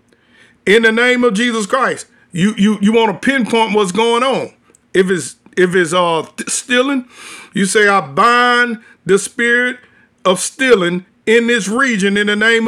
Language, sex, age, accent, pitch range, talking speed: English, male, 50-69, American, 215-255 Hz, 165 wpm